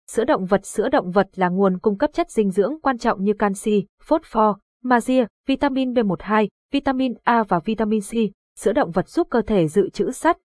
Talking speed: 205 wpm